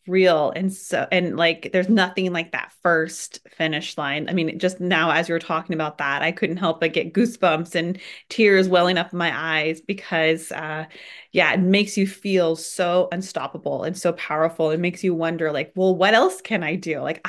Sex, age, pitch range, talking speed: female, 30-49, 165-200 Hz, 205 wpm